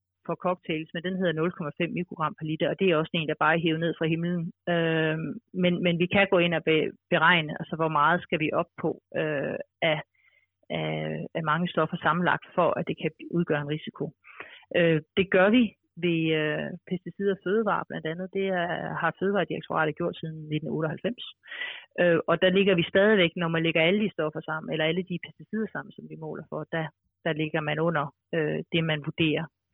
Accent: native